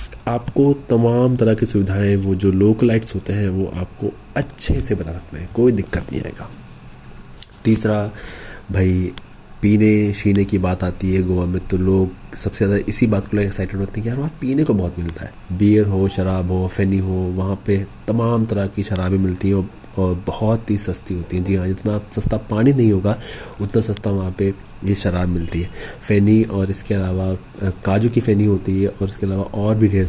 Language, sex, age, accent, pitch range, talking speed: Hindi, male, 30-49, native, 95-105 Hz, 195 wpm